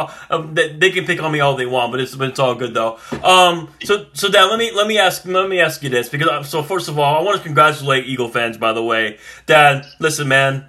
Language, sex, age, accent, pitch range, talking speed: English, male, 30-49, American, 145-180 Hz, 270 wpm